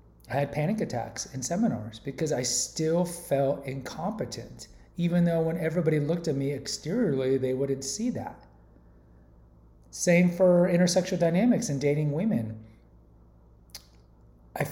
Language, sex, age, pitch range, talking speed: English, male, 30-49, 110-165 Hz, 125 wpm